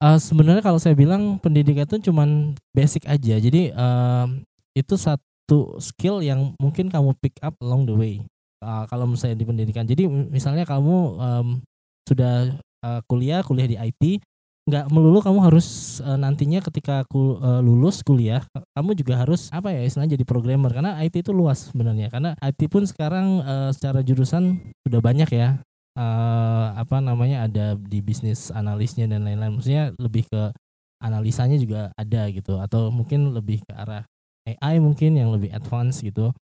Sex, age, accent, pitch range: male, 20-39, native, 115-150 Hz